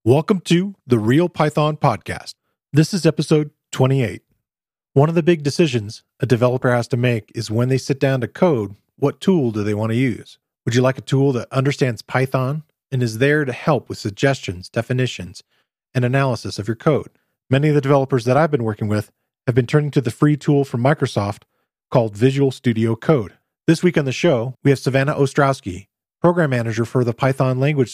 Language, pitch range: English, 115-150 Hz